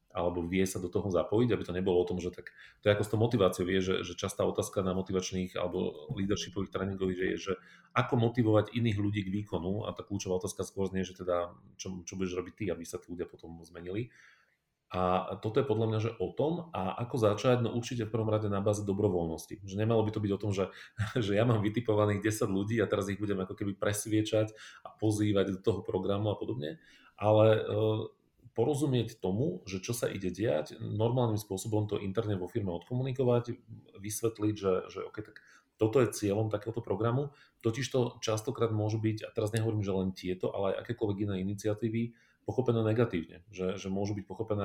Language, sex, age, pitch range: Slovak, male, 30-49, 95-110 Hz